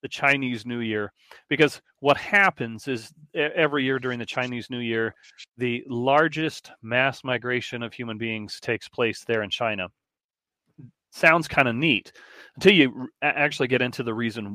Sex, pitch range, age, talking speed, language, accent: male, 115-135 Hz, 40-59, 155 wpm, English, American